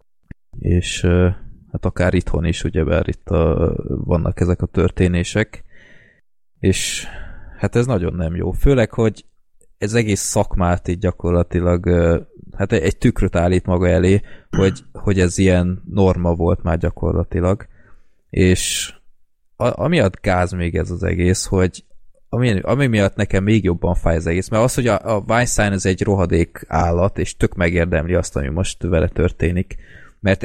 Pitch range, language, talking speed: 85-105 Hz, Hungarian, 155 wpm